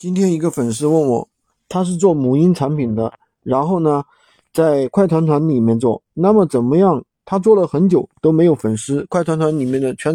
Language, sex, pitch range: Chinese, male, 130-185 Hz